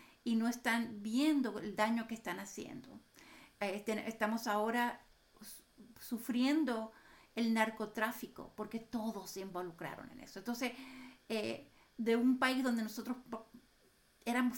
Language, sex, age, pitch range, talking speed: Spanish, female, 50-69, 215-245 Hz, 125 wpm